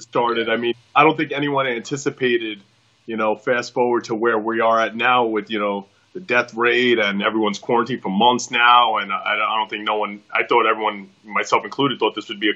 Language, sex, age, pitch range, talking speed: English, male, 30-49, 105-125 Hz, 225 wpm